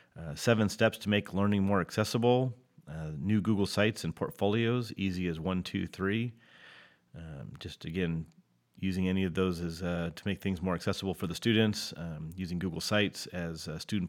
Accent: American